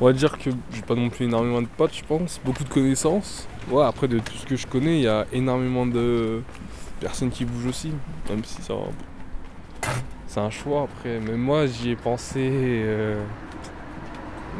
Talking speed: 190 wpm